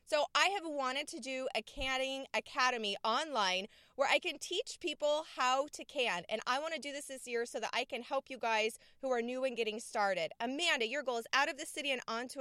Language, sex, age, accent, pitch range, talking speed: English, female, 20-39, American, 230-290 Hz, 235 wpm